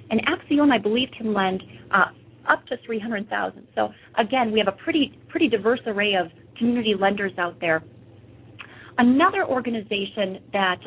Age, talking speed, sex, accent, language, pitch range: 40-59, 150 wpm, female, American, English, 185-230 Hz